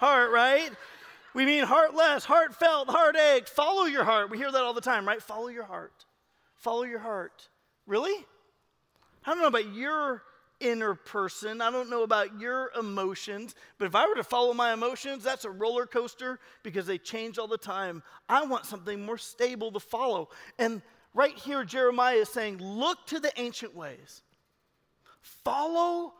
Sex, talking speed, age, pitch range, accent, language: male, 170 wpm, 30-49, 215-265 Hz, American, English